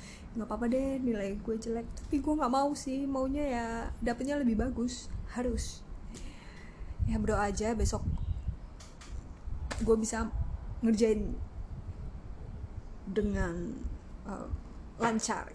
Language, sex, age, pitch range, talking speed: Indonesian, female, 20-39, 210-260 Hz, 105 wpm